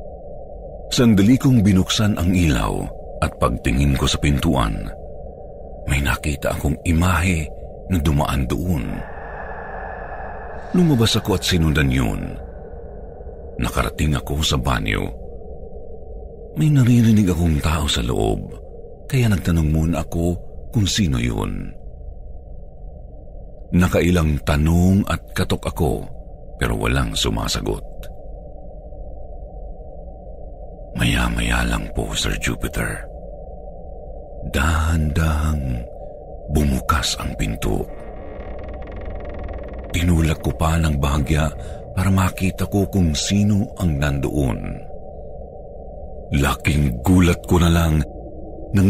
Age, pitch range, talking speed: 50-69, 75-110 Hz, 90 wpm